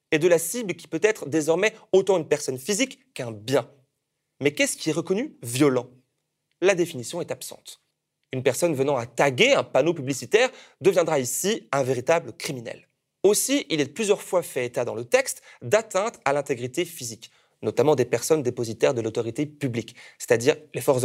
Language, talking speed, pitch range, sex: French, 175 wpm, 130-180 Hz, male